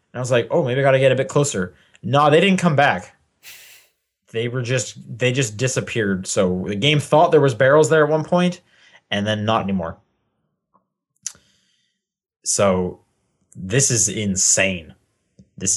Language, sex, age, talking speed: English, male, 20-39, 165 wpm